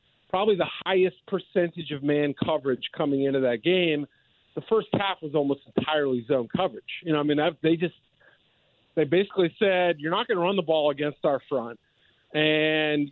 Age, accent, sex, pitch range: 40-59, American, male, 145-185 Hz